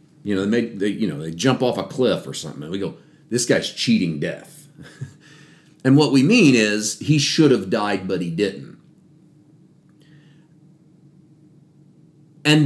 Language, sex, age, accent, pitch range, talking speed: English, male, 40-59, American, 115-155 Hz, 160 wpm